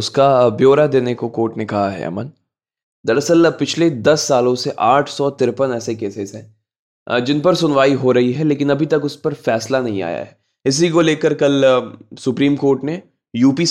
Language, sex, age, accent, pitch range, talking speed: Hindi, male, 20-39, native, 120-150 Hz, 180 wpm